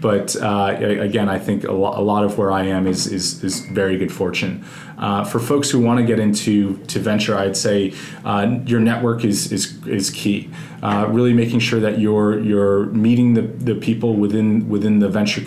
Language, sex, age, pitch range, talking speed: English, male, 20-39, 95-110 Hz, 200 wpm